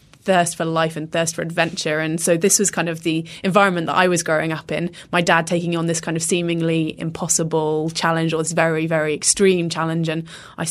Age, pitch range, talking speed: 20-39, 165-180 Hz, 220 wpm